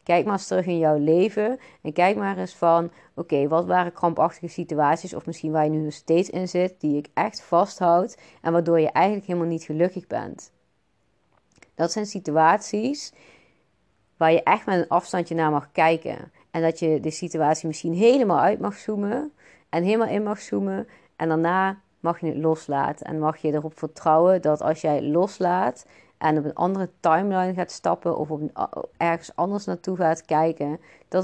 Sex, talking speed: female, 180 wpm